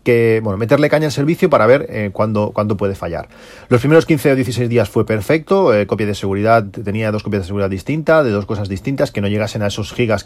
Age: 40-59